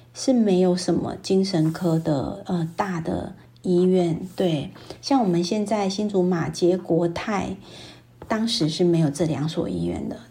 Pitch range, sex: 170-195 Hz, female